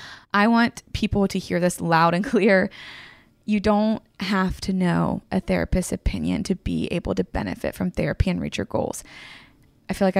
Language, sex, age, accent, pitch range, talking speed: English, female, 20-39, American, 180-210 Hz, 180 wpm